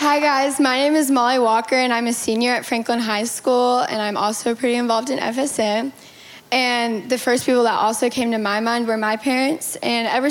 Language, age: English, 10-29